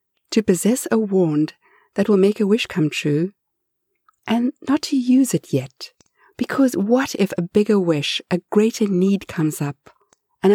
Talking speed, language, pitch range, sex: 165 wpm, English, 155-225 Hz, female